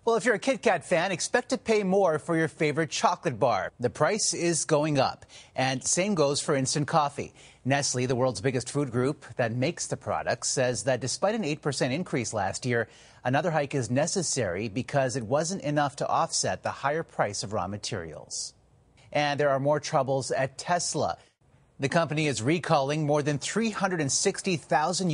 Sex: male